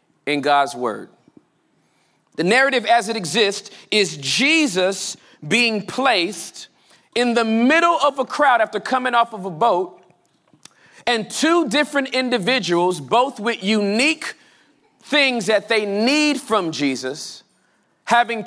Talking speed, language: 125 wpm, English